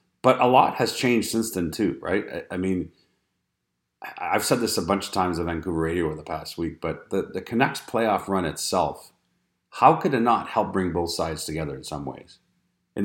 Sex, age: male, 40-59